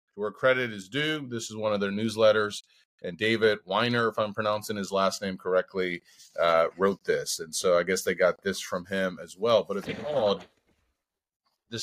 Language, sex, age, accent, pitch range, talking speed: English, male, 30-49, American, 100-130 Hz, 195 wpm